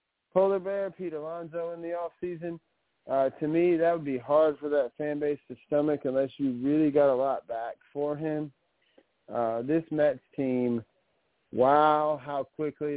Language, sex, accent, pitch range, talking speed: English, male, American, 130-155 Hz, 165 wpm